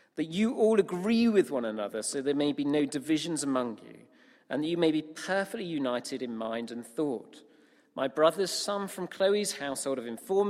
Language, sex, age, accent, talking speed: English, male, 40-59, British, 195 wpm